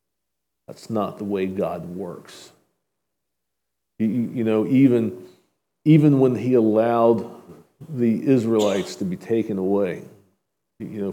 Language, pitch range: English, 100-125 Hz